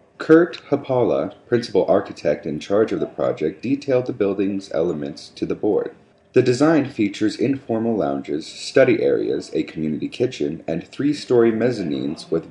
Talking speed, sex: 145 wpm, male